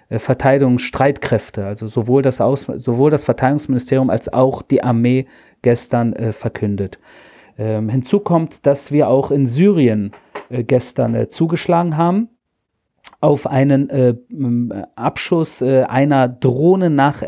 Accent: German